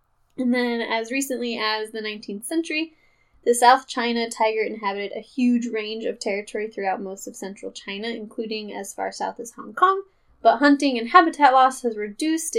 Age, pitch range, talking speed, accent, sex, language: 10-29, 195-250 Hz, 175 wpm, American, female, English